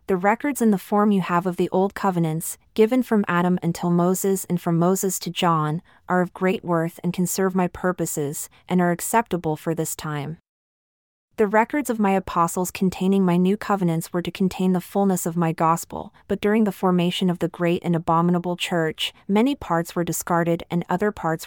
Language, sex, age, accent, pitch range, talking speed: English, female, 30-49, American, 170-195 Hz, 195 wpm